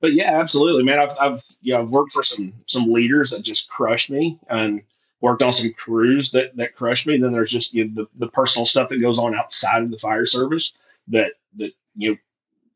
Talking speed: 230 wpm